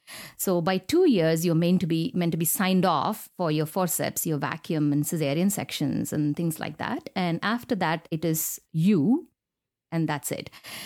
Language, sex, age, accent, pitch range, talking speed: English, female, 50-69, Indian, 165-225 Hz, 190 wpm